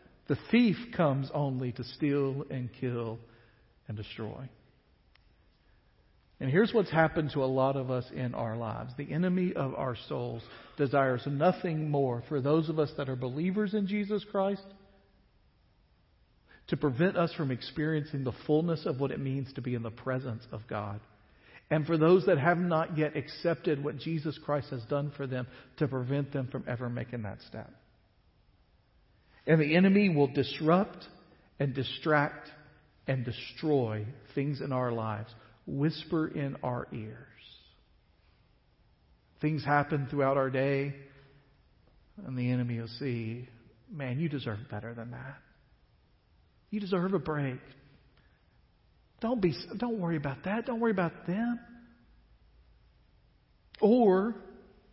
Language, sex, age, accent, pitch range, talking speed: English, male, 50-69, American, 120-165 Hz, 140 wpm